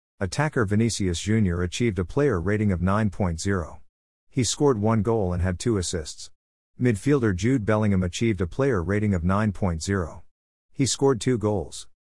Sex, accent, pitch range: male, American, 90-115 Hz